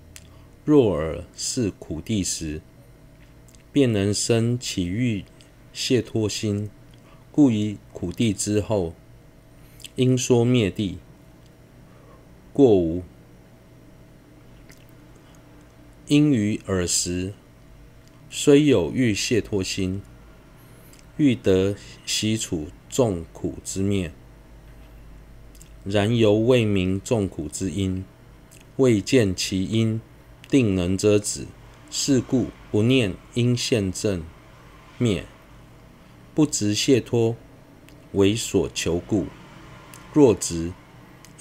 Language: Chinese